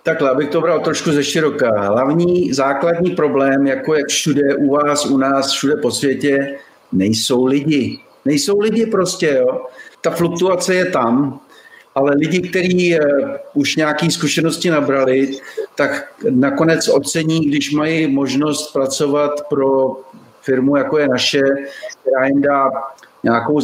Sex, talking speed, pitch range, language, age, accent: male, 130 wpm, 135-160 Hz, Czech, 50-69, native